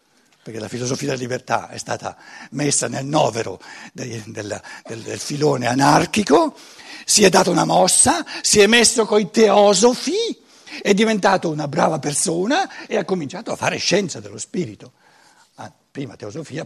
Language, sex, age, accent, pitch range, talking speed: Italian, male, 60-79, native, 115-185 Hz, 145 wpm